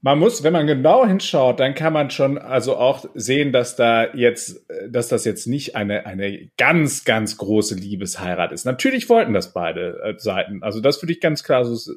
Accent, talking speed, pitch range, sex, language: German, 195 wpm, 110-155 Hz, male, German